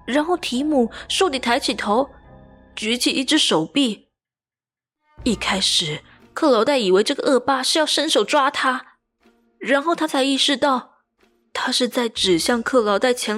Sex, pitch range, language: female, 225-285 Hz, Chinese